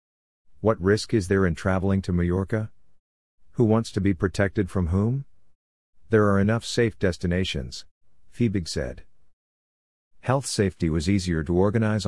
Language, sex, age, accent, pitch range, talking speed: English, male, 50-69, American, 85-105 Hz, 140 wpm